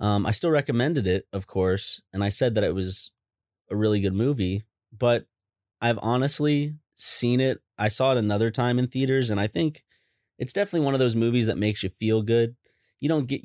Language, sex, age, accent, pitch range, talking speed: English, male, 30-49, American, 95-120 Hz, 205 wpm